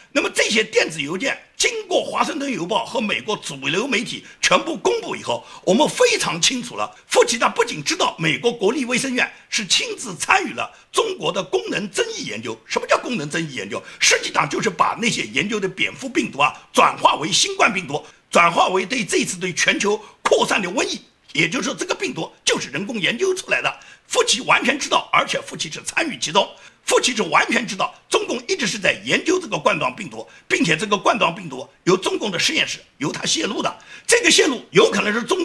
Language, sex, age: Chinese, male, 50-69